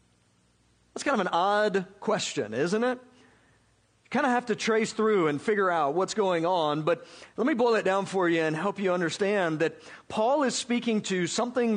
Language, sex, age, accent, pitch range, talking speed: English, male, 50-69, American, 165-230 Hz, 200 wpm